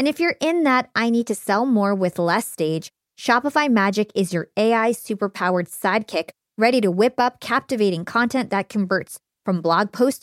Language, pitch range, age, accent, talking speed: English, 195-250 Hz, 20-39, American, 180 wpm